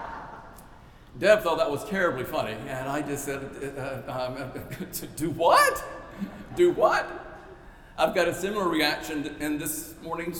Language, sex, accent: English, male, American